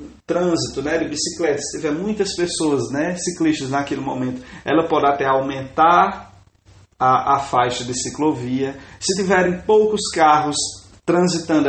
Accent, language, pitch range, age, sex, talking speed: Brazilian, English, 135-180 Hz, 20-39, male, 135 wpm